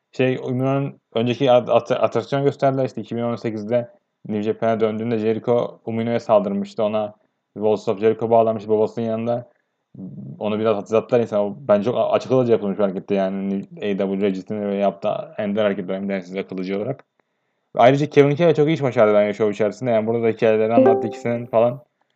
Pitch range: 110-130 Hz